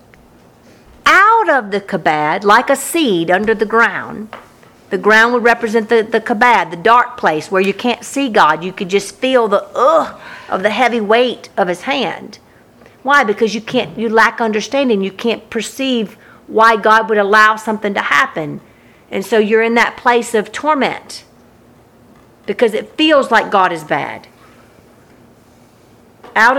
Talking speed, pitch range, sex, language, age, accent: 160 wpm, 210-295 Hz, female, English, 50-69, American